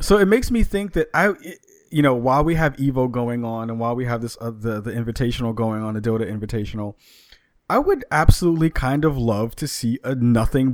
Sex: male